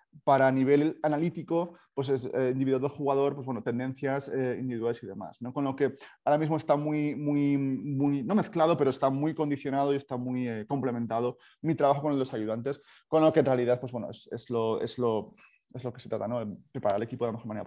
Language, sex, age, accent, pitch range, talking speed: Spanish, male, 30-49, Spanish, 120-140 Hz, 230 wpm